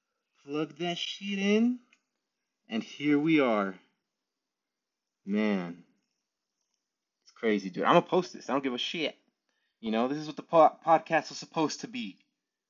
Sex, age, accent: male, 20-39, American